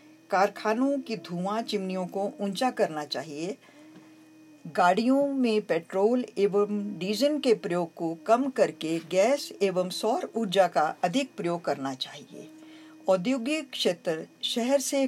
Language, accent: Hindi, native